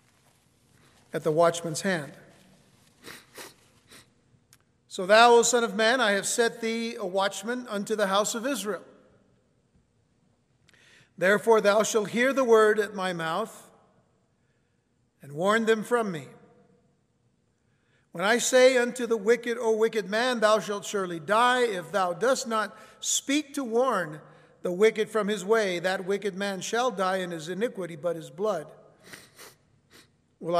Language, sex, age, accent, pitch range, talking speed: English, male, 50-69, American, 165-225 Hz, 140 wpm